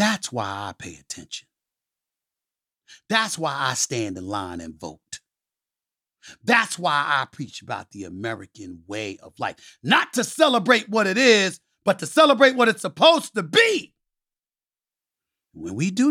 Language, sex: English, male